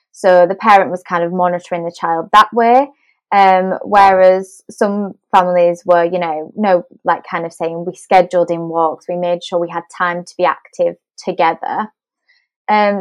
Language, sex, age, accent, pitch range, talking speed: English, female, 20-39, British, 175-215 Hz, 175 wpm